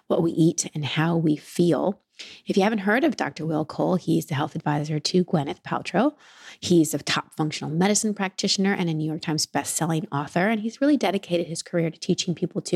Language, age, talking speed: English, 30-49, 210 wpm